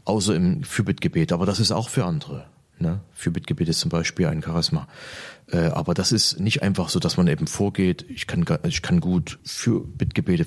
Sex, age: male, 30-49